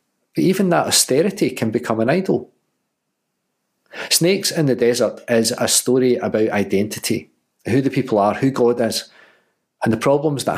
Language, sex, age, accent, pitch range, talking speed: English, male, 40-59, British, 115-155 Hz, 160 wpm